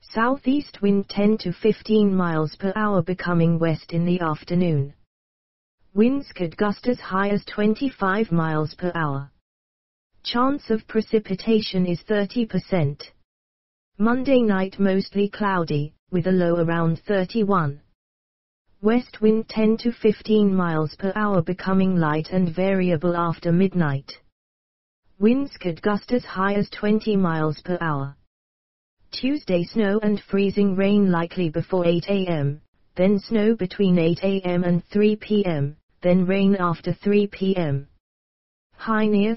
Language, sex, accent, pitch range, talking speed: English, female, British, 165-210 Hz, 130 wpm